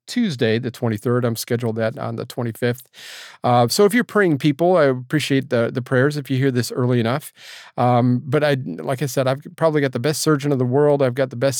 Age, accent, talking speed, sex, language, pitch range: 40-59, American, 245 wpm, male, English, 125-155 Hz